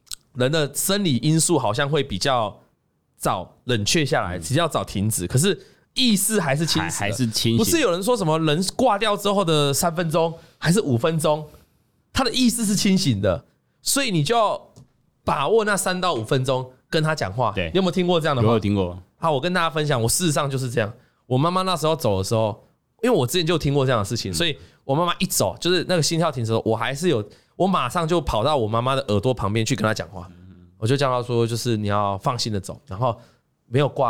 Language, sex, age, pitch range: Chinese, male, 20-39, 110-170 Hz